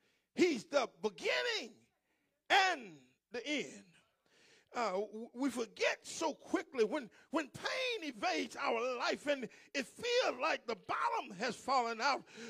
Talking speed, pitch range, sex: 125 wpm, 245-355 Hz, male